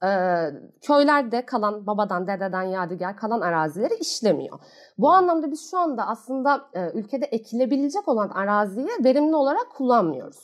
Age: 30-49